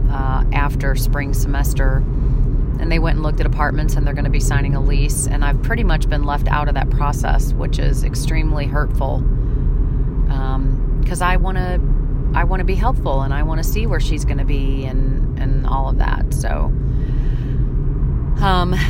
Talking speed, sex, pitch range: 190 wpm, female, 130-140 Hz